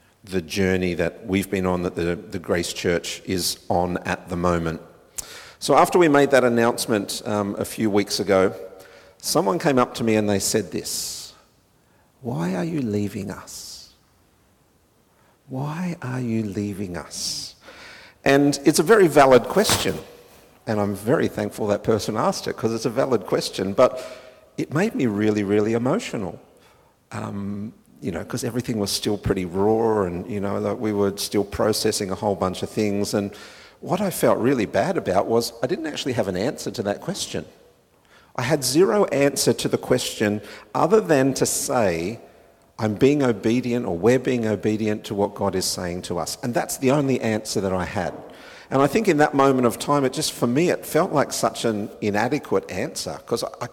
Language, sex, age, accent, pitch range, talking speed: English, male, 50-69, Australian, 100-125 Hz, 185 wpm